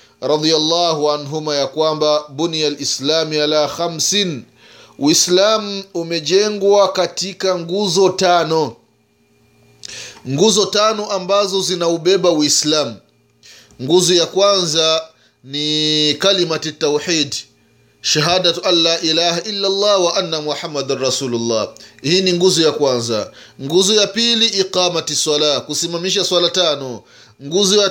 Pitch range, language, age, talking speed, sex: 145-190 Hz, Swahili, 30-49, 105 wpm, male